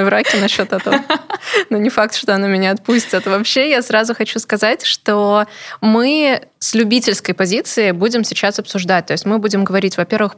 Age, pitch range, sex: 20-39, 180-220 Hz, female